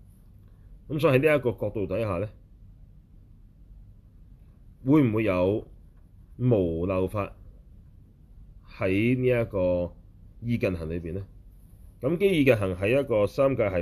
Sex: male